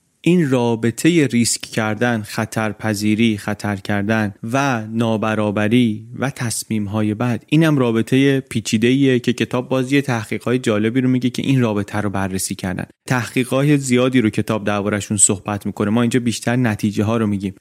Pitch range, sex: 105-125 Hz, male